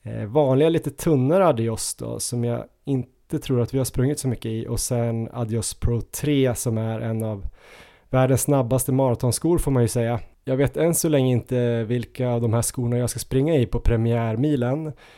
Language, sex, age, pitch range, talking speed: Swedish, male, 20-39, 115-135 Hz, 195 wpm